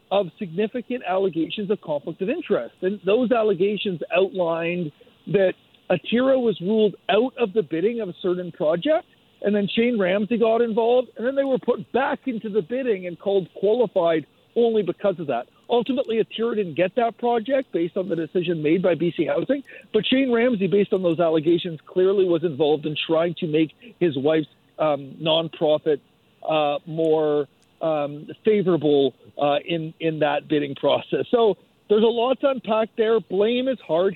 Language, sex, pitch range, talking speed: English, male, 165-225 Hz, 170 wpm